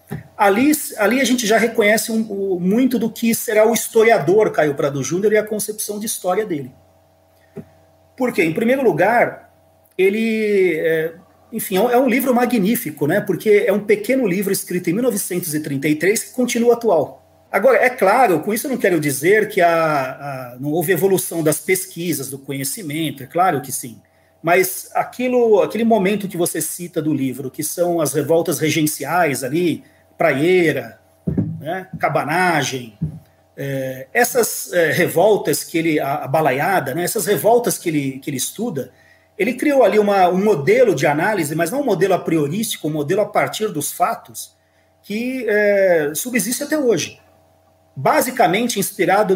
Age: 40-59